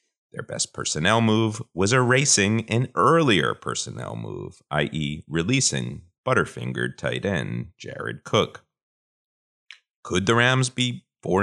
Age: 30-49